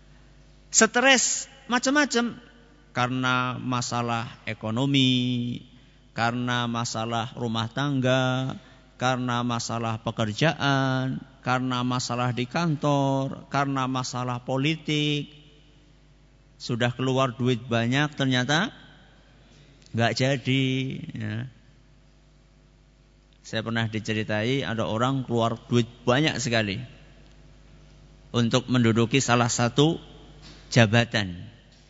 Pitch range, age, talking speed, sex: 125-145 Hz, 50-69, 75 wpm, male